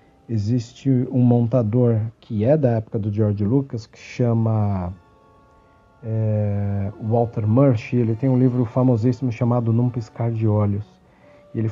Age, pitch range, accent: 50-69, 110-130 Hz, Brazilian